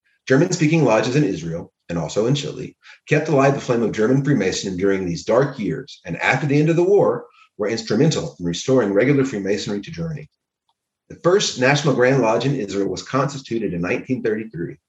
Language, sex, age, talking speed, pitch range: English, male, 30-49, 180 wpm, 100-160 Hz